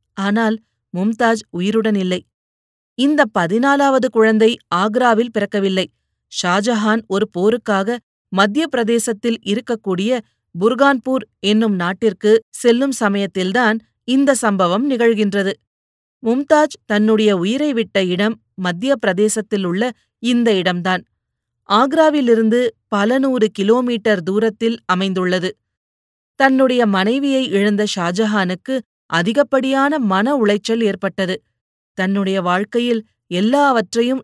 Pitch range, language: 195-245 Hz, Tamil